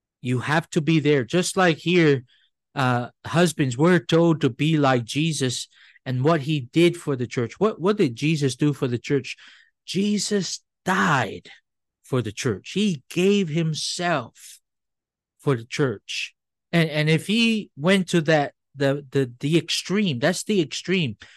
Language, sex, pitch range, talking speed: English, male, 140-180 Hz, 155 wpm